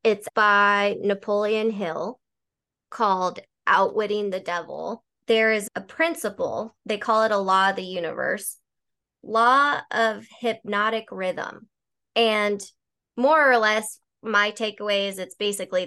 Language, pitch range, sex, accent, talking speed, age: English, 190-225 Hz, female, American, 125 wpm, 20-39